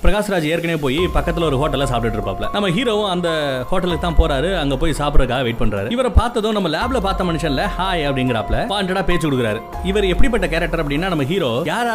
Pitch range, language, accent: 135-180 Hz, Tamil, native